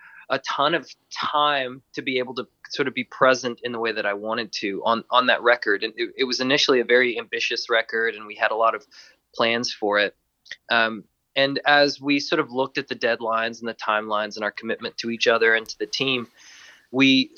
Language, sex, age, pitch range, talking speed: Danish, male, 20-39, 115-145 Hz, 225 wpm